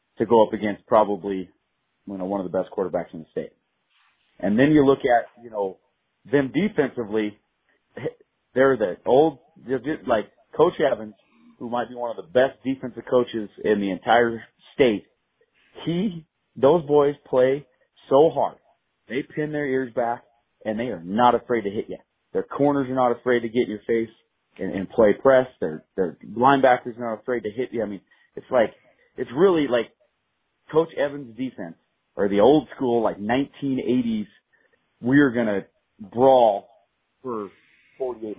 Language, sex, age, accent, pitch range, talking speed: English, male, 30-49, American, 105-135 Hz, 165 wpm